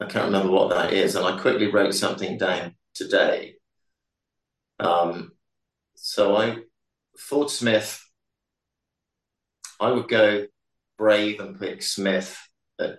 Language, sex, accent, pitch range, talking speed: English, male, British, 95-120 Hz, 120 wpm